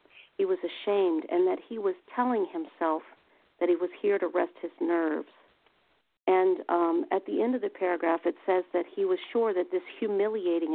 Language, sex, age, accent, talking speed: English, female, 50-69, American, 190 wpm